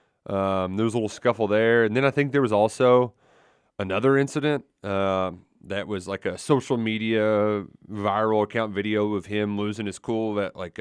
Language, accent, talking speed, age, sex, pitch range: English, American, 185 wpm, 30-49, male, 100-135 Hz